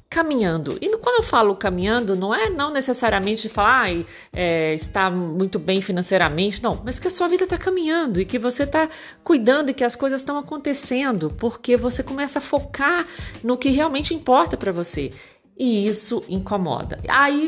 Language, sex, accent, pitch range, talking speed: Portuguese, female, Brazilian, 175-250 Hz, 175 wpm